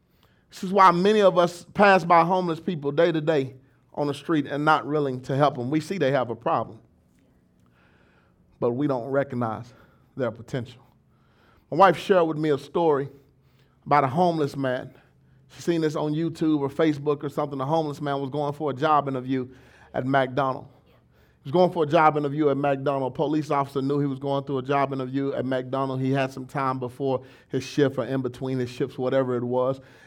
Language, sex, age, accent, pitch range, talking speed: English, male, 30-49, American, 130-160 Hz, 200 wpm